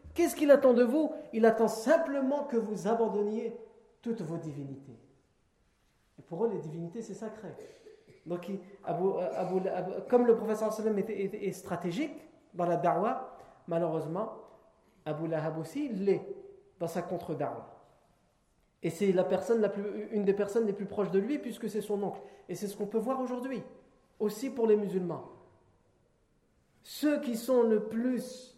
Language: French